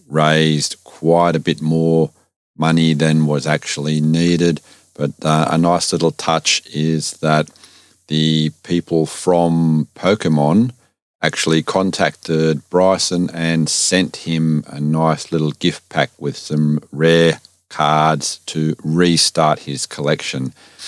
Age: 40-59